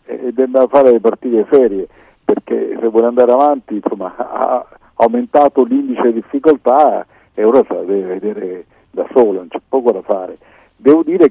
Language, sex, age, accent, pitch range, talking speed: Italian, male, 50-69, native, 105-130 Hz, 175 wpm